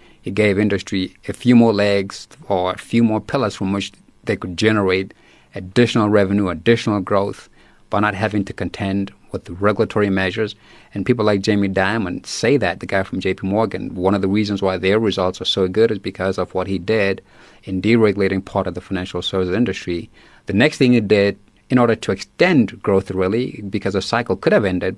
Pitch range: 95-110 Hz